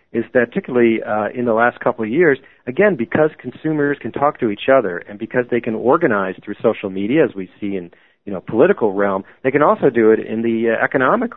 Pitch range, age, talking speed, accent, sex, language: 110-135 Hz, 40-59, 225 wpm, American, male, English